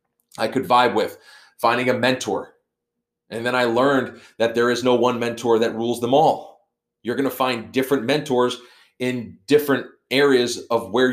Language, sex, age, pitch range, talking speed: English, male, 30-49, 110-130 Hz, 165 wpm